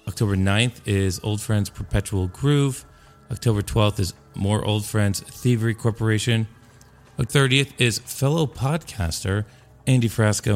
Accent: American